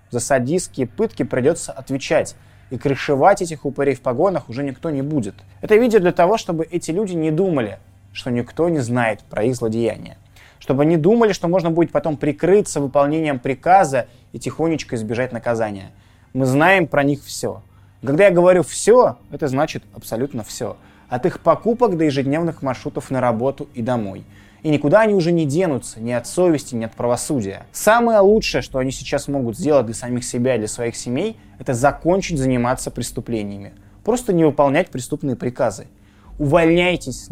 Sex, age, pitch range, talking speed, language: male, 20-39, 120-160 Hz, 165 wpm, Russian